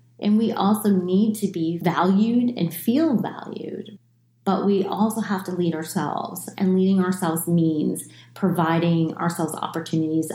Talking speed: 140 wpm